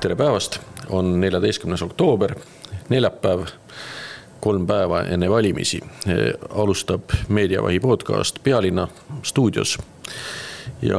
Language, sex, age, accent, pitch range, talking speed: English, male, 40-59, Finnish, 90-105 Hz, 85 wpm